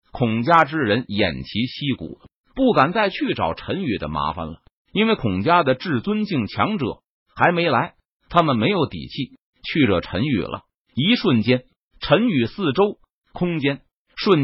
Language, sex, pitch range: Chinese, male, 120-200 Hz